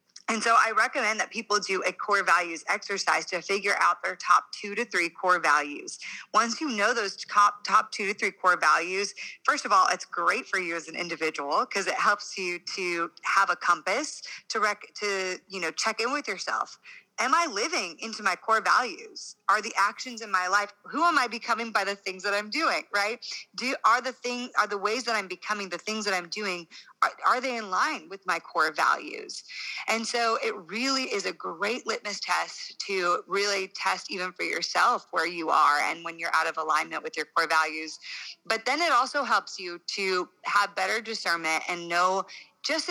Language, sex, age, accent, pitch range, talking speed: English, female, 30-49, American, 175-220 Hz, 205 wpm